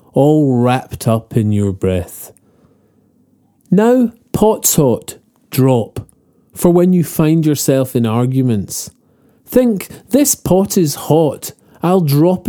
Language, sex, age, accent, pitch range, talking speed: English, male, 40-59, British, 120-185 Hz, 115 wpm